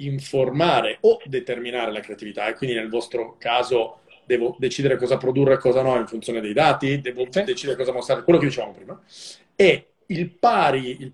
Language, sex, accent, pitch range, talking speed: Italian, male, native, 130-165 Hz, 180 wpm